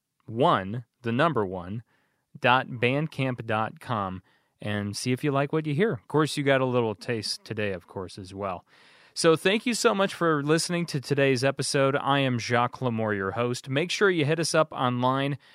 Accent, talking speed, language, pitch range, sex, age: American, 195 wpm, English, 105-135 Hz, male, 30-49